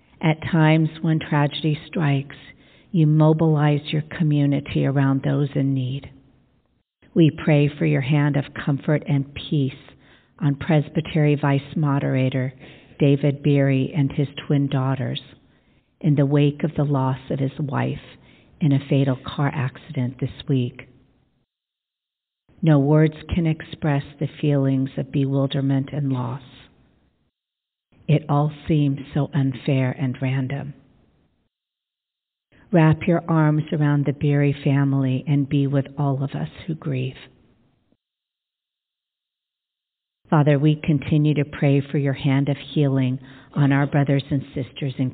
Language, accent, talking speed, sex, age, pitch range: English, American, 130 wpm, female, 50-69, 135-150 Hz